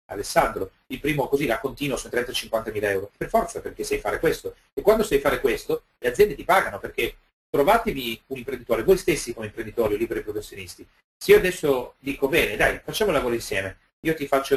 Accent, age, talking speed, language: native, 40-59, 200 wpm, Italian